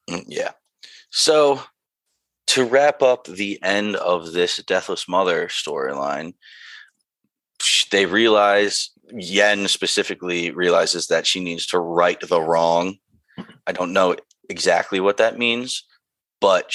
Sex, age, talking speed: male, 30-49, 115 wpm